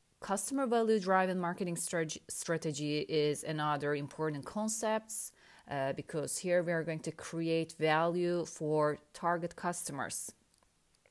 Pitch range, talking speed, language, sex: 150-185 Hz, 120 wpm, Turkish, female